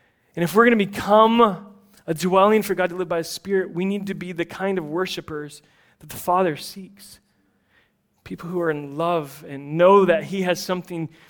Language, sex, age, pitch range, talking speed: English, male, 30-49, 165-205 Hz, 200 wpm